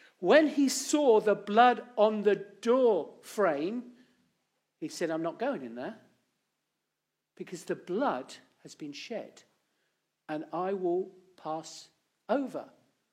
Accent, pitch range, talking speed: British, 165-240 Hz, 125 wpm